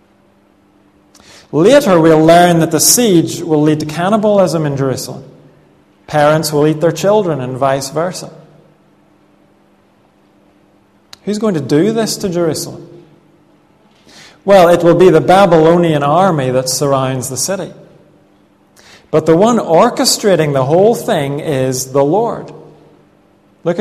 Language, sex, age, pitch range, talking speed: English, male, 40-59, 135-170 Hz, 125 wpm